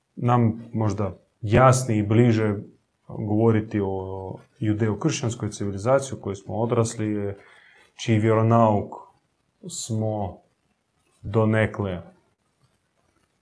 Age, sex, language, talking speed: 30-49, male, Croatian, 75 wpm